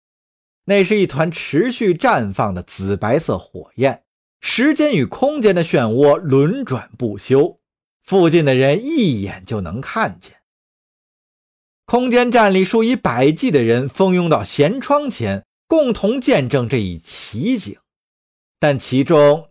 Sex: male